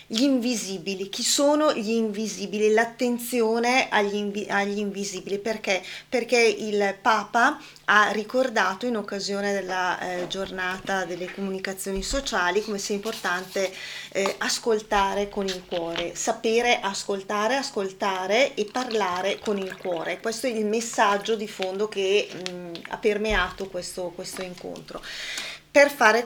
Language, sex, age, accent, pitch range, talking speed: Italian, female, 20-39, native, 195-235 Hz, 125 wpm